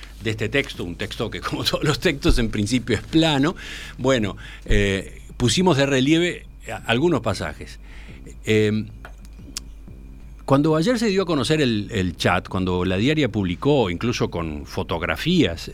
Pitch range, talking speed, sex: 90-120 Hz, 145 wpm, male